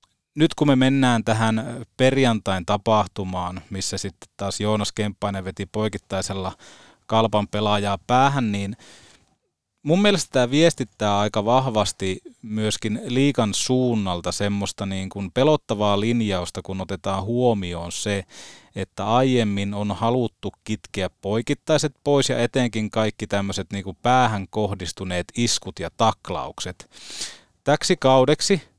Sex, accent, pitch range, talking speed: male, native, 100-125 Hz, 115 wpm